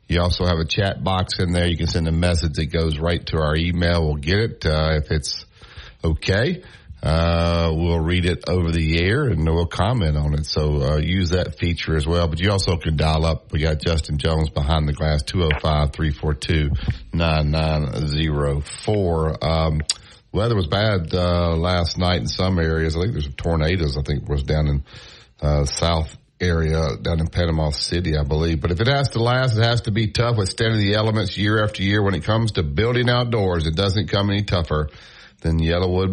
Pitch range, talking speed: 80-110 Hz, 215 wpm